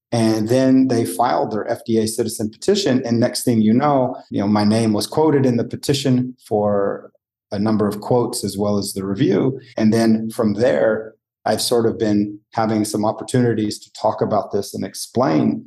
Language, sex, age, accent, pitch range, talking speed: English, male, 30-49, American, 105-120 Hz, 190 wpm